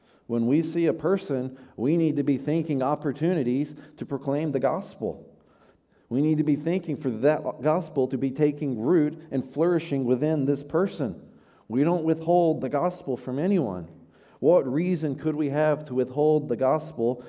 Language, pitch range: English, 120-150 Hz